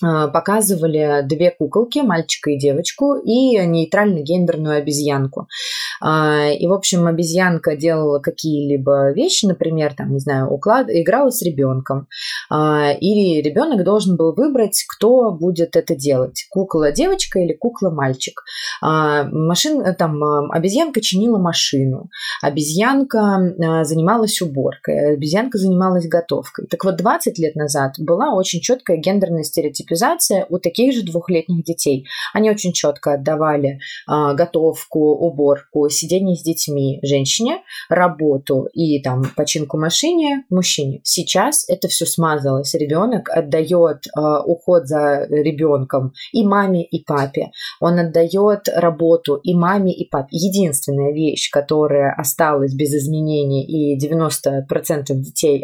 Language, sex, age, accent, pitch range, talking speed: Russian, female, 20-39, native, 145-185 Hz, 120 wpm